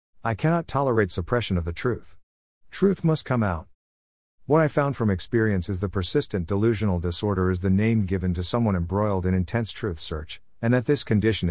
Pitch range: 90-110 Hz